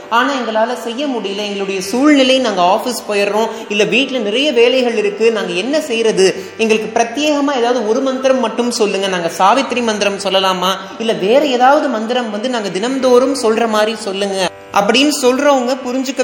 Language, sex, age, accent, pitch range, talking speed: Tamil, male, 30-49, native, 200-255 Hz, 120 wpm